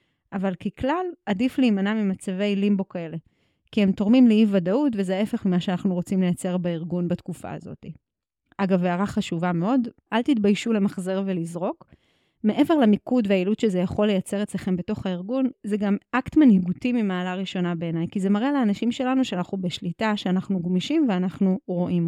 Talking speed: 150 wpm